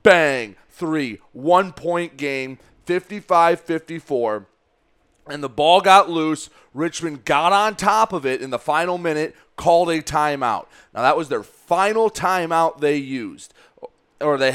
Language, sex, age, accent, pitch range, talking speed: English, male, 30-49, American, 140-180 Hz, 145 wpm